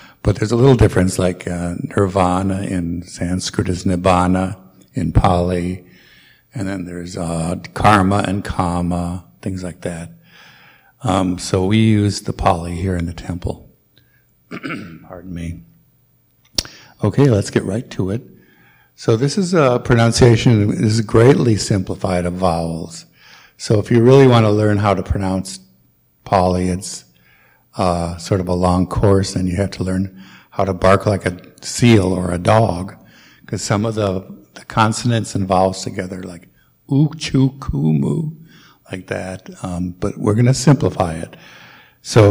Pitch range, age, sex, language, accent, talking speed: 90-110 Hz, 60-79, male, English, American, 150 wpm